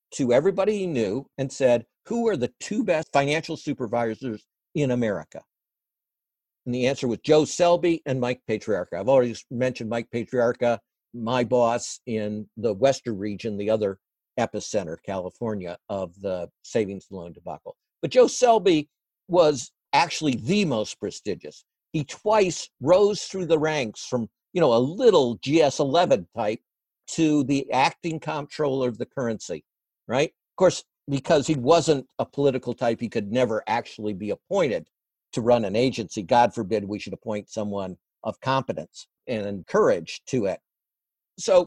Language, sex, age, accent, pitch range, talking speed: English, male, 50-69, American, 115-165 Hz, 150 wpm